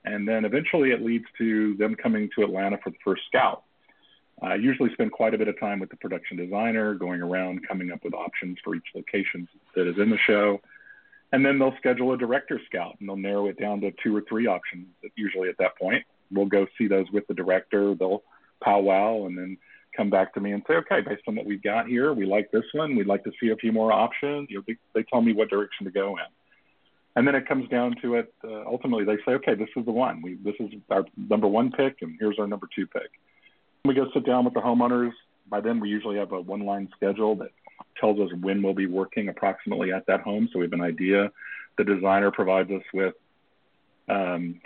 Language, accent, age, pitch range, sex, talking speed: English, American, 40-59, 100-120 Hz, male, 230 wpm